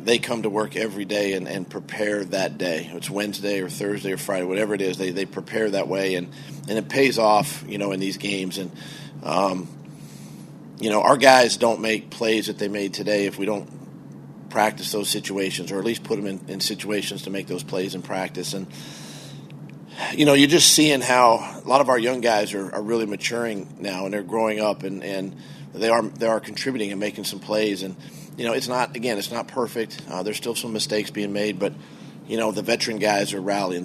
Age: 40-59